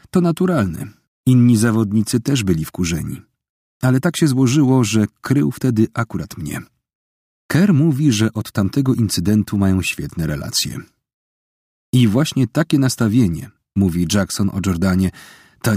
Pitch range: 95-130 Hz